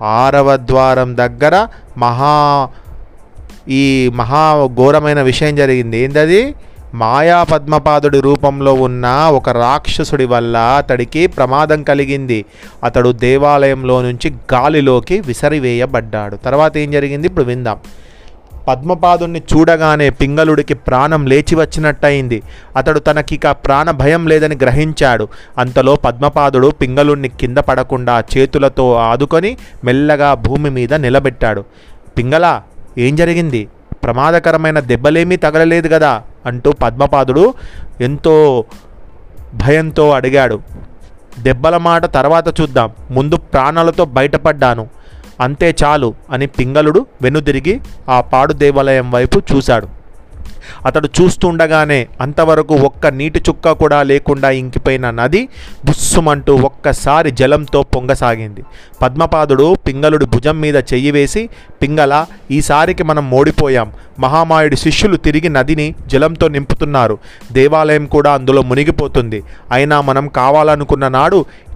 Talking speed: 100 wpm